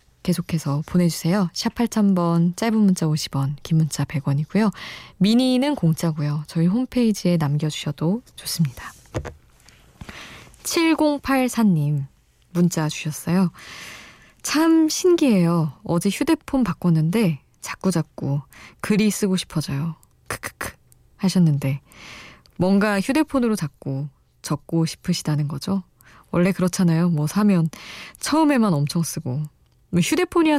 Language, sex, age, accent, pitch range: Korean, female, 20-39, native, 155-210 Hz